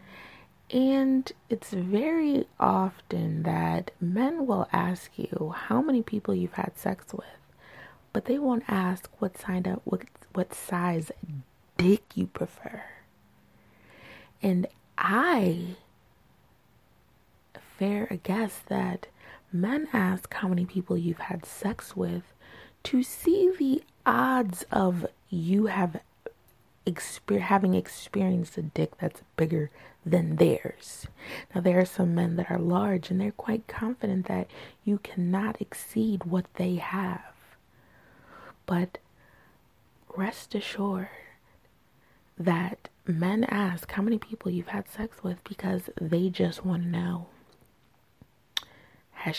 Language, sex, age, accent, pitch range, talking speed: English, female, 20-39, American, 175-210 Hz, 120 wpm